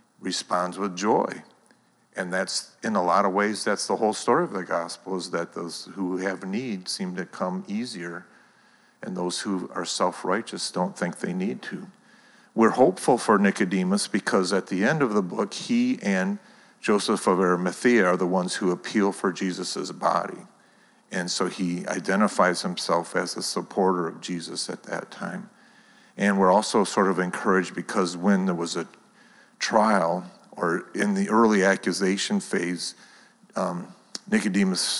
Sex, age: male, 50-69